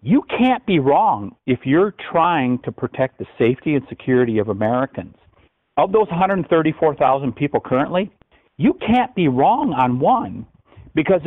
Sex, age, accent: male, 50-69, American